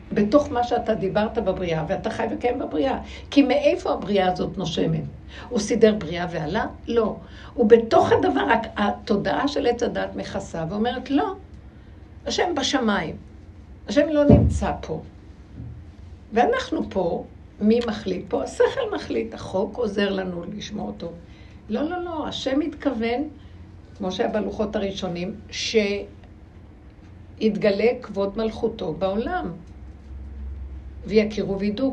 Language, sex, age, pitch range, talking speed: Hebrew, female, 60-79, 165-240 Hz, 115 wpm